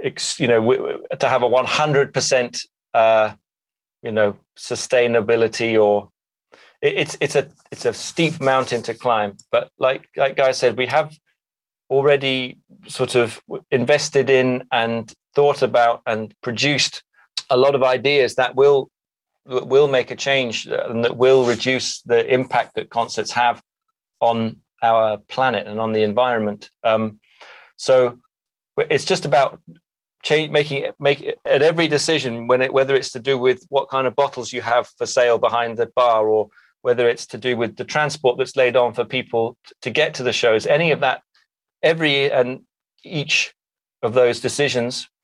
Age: 30-49